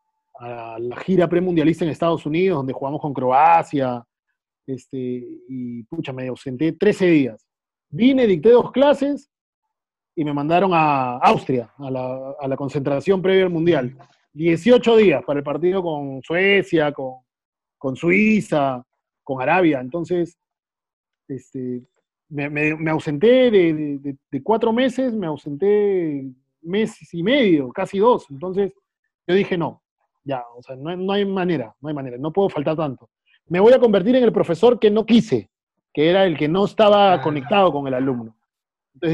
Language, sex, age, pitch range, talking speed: Spanish, male, 30-49, 135-195 Hz, 160 wpm